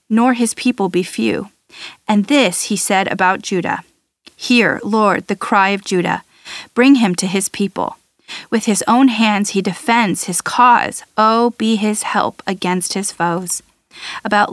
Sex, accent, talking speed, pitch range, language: female, American, 160 wpm, 190-230 Hz, English